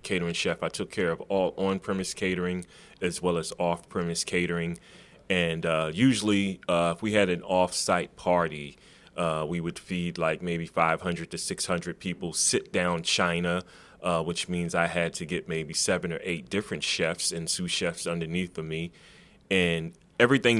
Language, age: English, 30-49